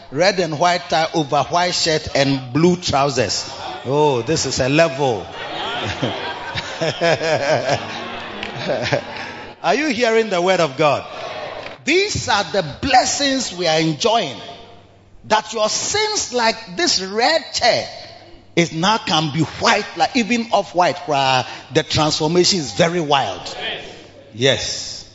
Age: 30-49